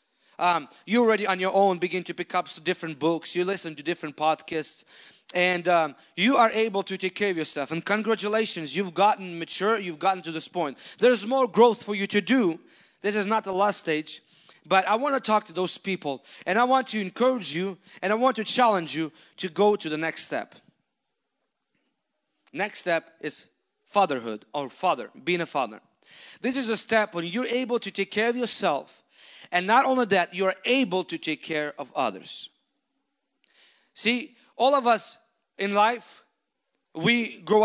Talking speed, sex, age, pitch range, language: 185 wpm, male, 40-59, 175-240 Hz, English